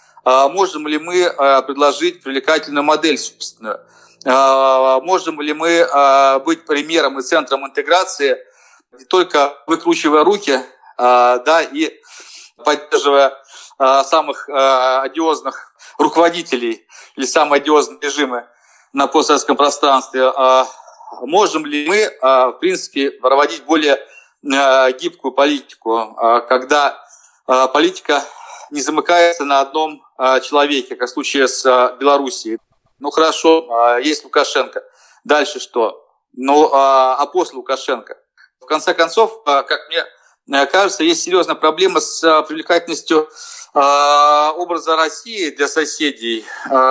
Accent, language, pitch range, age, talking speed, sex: native, Russian, 135-170 Hz, 40-59, 100 wpm, male